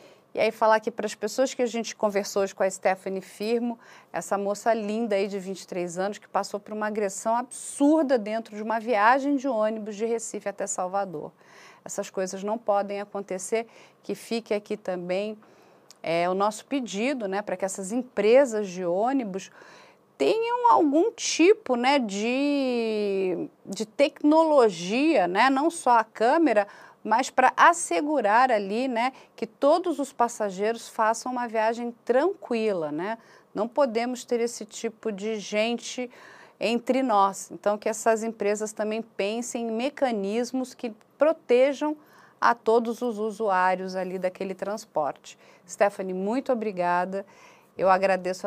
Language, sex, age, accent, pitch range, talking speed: Portuguese, female, 40-59, Brazilian, 195-245 Hz, 140 wpm